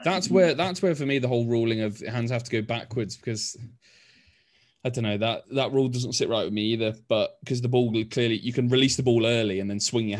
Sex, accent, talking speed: male, British, 255 wpm